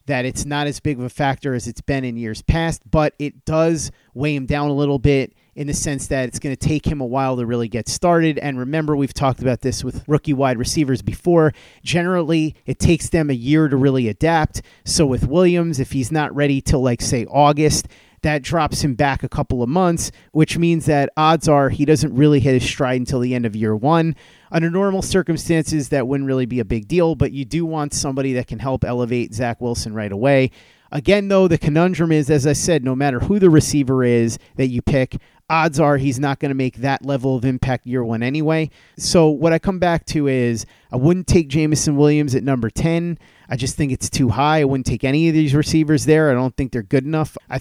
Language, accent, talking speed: English, American, 230 wpm